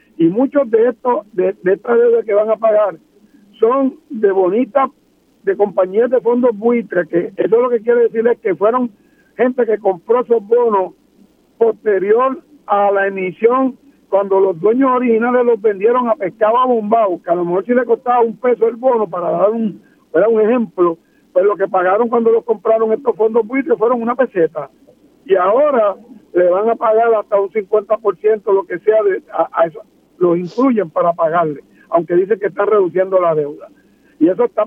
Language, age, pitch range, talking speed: Spanish, 60-79, 195-245 Hz, 185 wpm